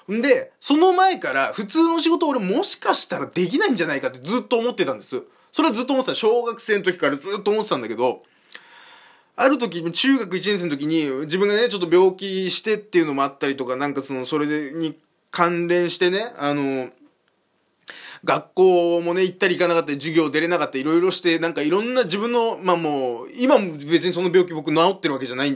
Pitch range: 160-250 Hz